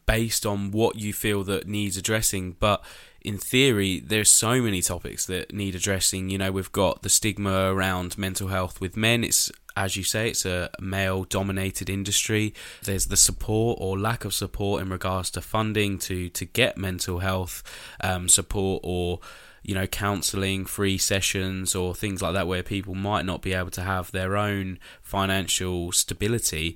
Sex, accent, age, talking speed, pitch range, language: male, British, 10-29, 175 wpm, 95-105 Hz, English